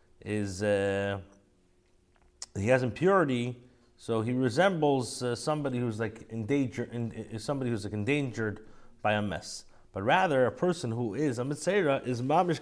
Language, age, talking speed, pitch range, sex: English, 30-49, 150 wpm, 115-150 Hz, male